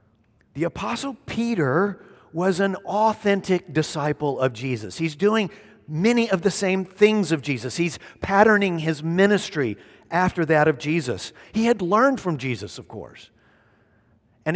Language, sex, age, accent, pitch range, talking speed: English, male, 50-69, American, 115-190 Hz, 140 wpm